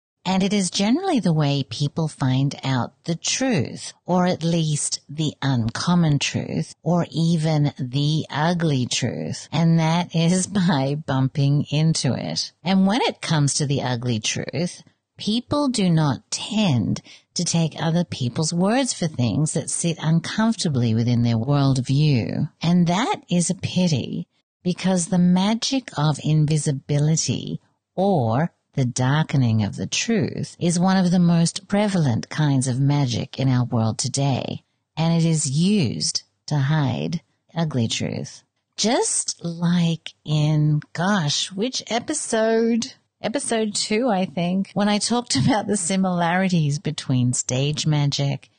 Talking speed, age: 135 wpm, 50-69